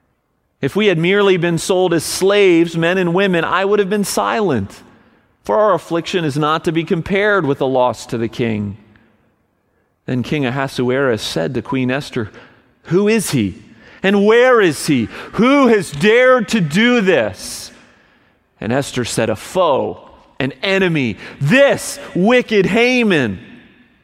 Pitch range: 130-175 Hz